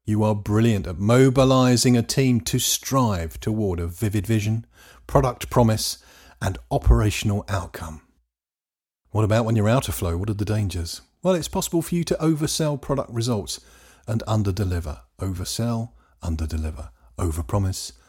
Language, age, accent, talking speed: English, 50-69, British, 145 wpm